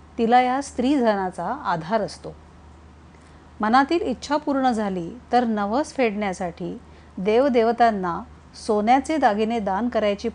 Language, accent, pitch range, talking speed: Marathi, native, 165-240 Hz, 100 wpm